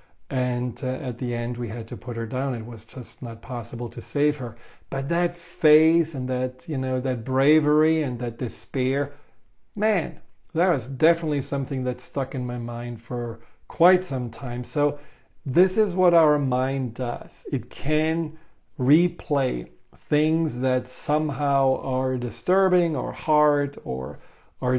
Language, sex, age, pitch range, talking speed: English, male, 40-59, 125-155 Hz, 155 wpm